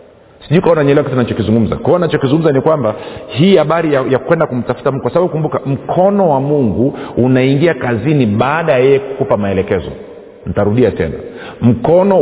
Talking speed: 160 wpm